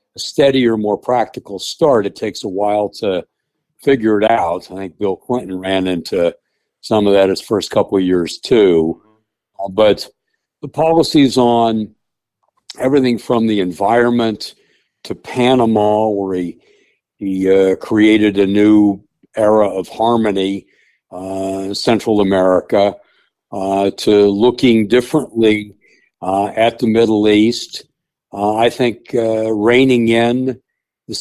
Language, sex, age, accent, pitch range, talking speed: English, male, 60-79, American, 100-115 Hz, 125 wpm